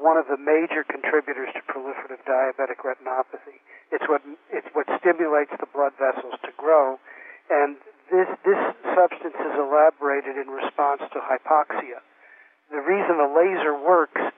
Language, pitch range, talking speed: English, 140-170 Hz, 140 wpm